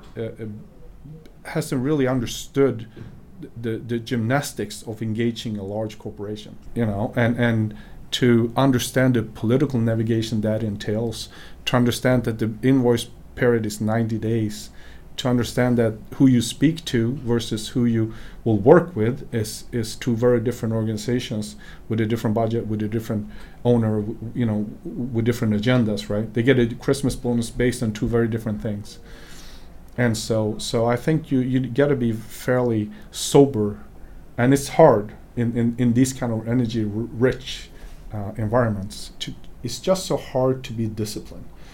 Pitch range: 110-125 Hz